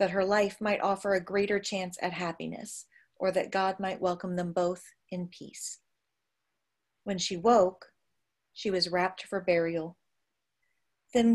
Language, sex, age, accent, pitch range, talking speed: English, female, 40-59, American, 180-210 Hz, 150 wpm